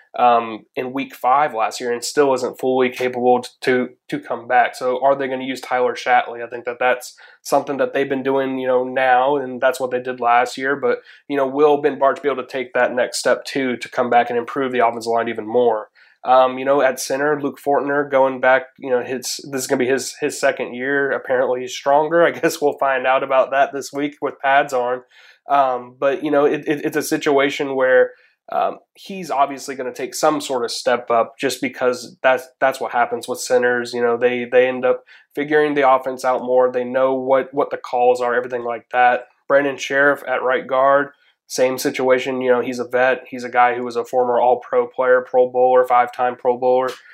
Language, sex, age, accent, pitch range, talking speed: English, male, 20-39, American, 125-140 Hz, 225 wpm